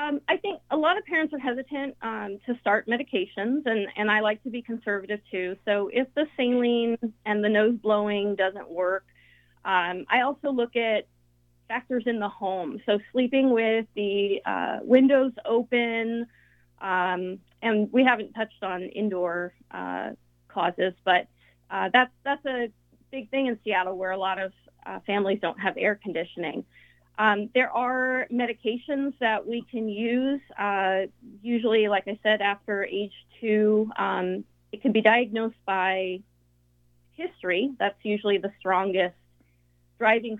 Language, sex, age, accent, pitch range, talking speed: English, female, 30-49, American, 190-240 Hz, 155 wpm